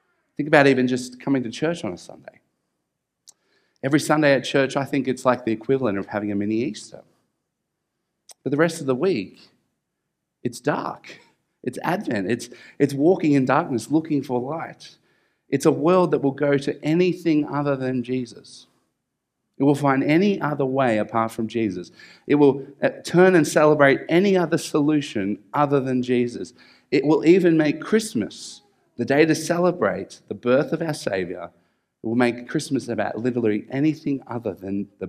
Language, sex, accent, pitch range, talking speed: English, male, Australian, 120-145 Hz, 165 wpm